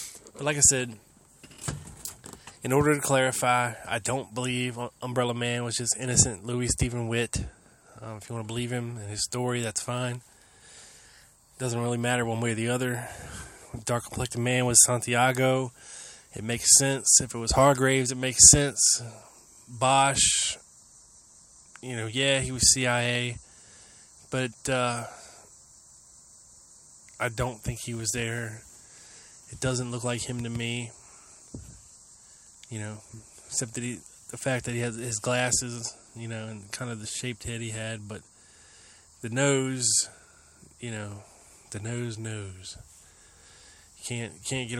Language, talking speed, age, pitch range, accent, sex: English, 145 wpm, 20-39, 110-125 Hz, American, male